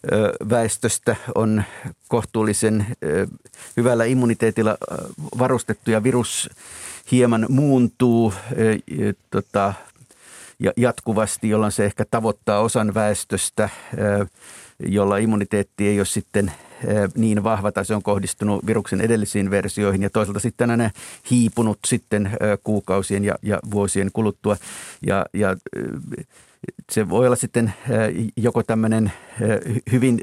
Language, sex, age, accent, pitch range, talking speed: Finnish, male, 50-69, native, 105-115 Hz, 100 wpm